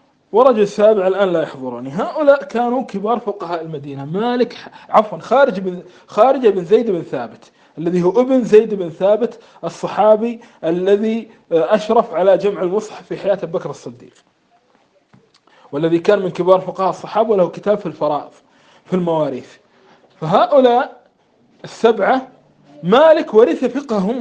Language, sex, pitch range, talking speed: Arabic, male, 185-260 Hz, 130 wpm